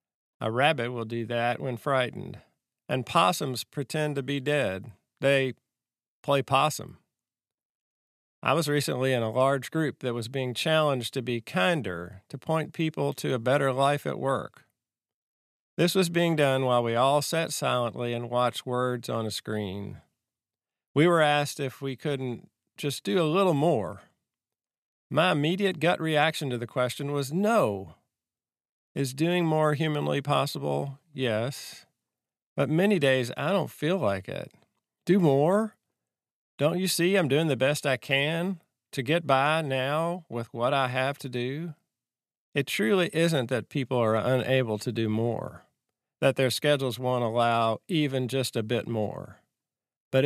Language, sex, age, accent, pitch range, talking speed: English, male, 50-69, American, 125-160 Hz, 155 wpm